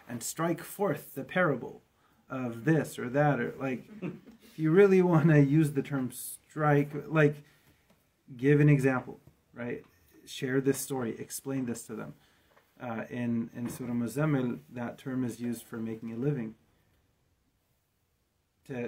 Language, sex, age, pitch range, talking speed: English, male, 30-49, 115-140 Hz, 145 wpm